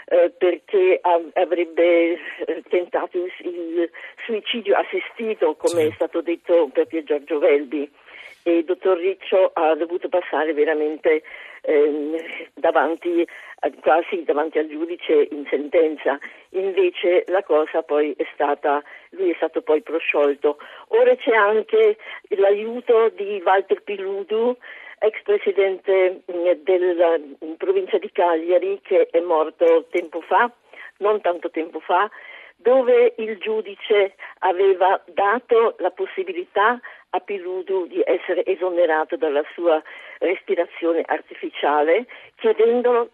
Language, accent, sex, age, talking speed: Italian, native, female, 50-69, 110 wpm